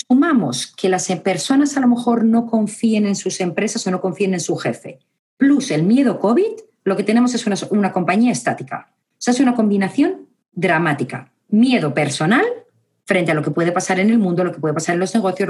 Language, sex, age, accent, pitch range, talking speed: Spanish, female, 40-59, Spanish, 175-250 Hz, 210 wpm